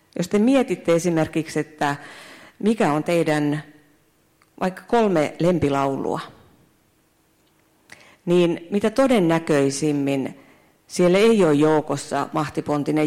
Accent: native